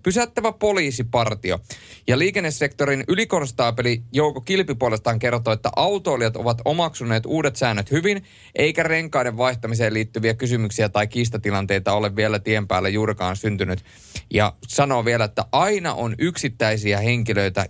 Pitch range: 105-140 Hz